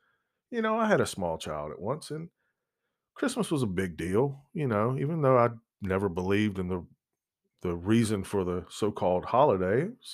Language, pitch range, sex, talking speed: English, 105-170 Hz, male, 180 wpm